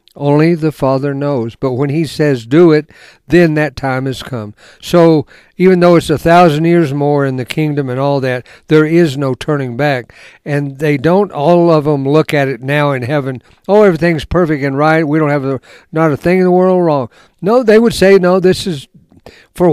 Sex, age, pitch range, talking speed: male, 60-79, 140-180 Hz, 210 wpm